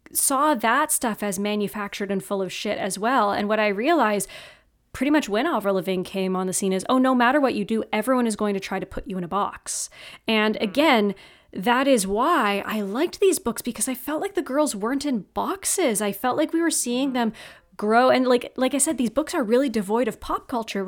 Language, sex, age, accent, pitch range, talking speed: English, female, 20-39, American, 200-250 Hz, 235 wpm